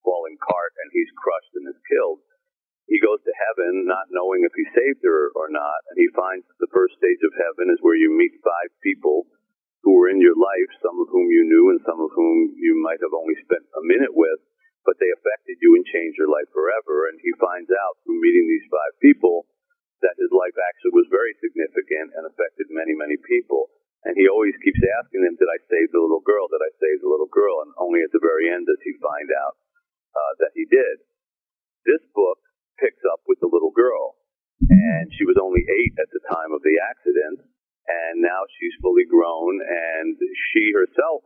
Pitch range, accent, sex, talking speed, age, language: 345-435 Hz, American, male, 210 wpm, 50-69, English